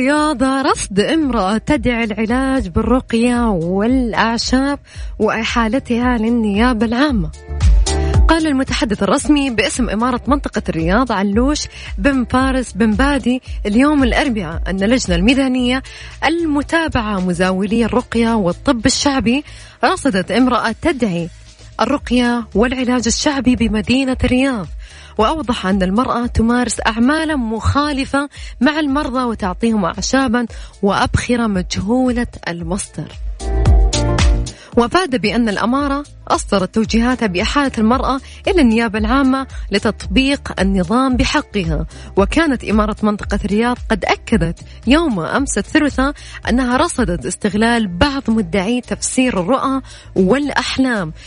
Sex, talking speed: female, 95 wpm